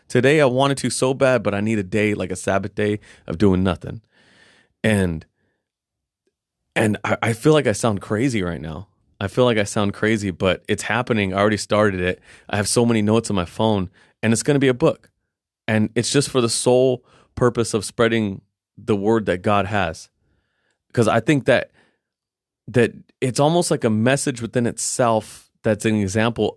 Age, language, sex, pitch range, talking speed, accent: 30-49, English, male, 105-135 Hz, 195 wpm, American